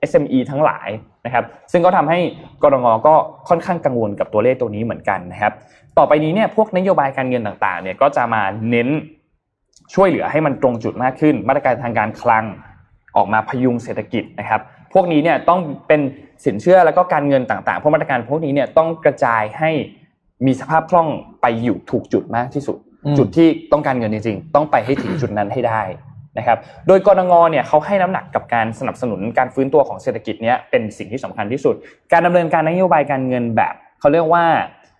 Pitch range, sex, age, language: 115-155 Hz, male, 20-39, Thai